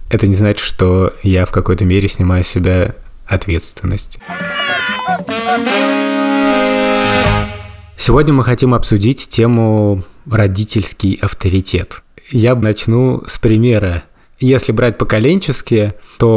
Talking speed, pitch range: 100 wpm, 100-120 Hz